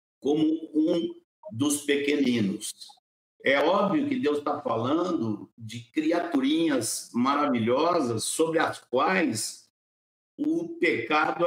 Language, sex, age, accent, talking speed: Portuguese, male, 60-79, Brazilian, 95 wpm